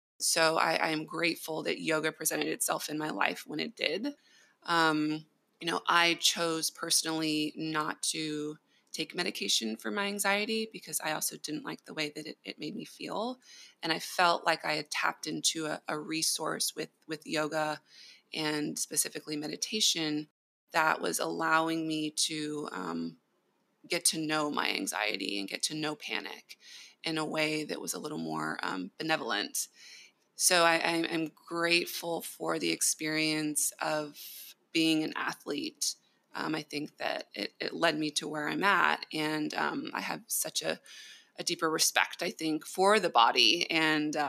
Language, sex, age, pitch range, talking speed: English, female, 20-39, 150-165 Hz, 165 wpm